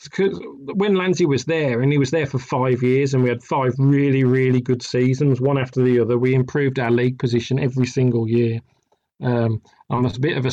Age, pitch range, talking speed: 40-59, 130-150 Hz, 215 wpm